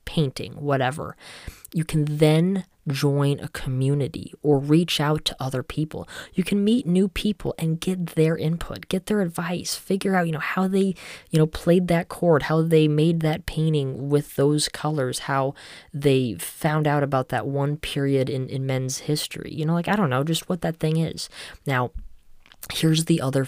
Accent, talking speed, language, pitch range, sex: American, 185 wpm, English, 130-155 Hz, female